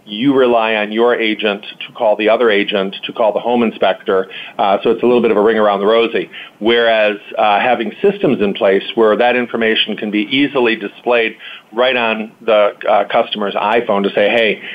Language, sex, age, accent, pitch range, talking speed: English, male, 40-59, American, 105-120 Hz, 200 wpm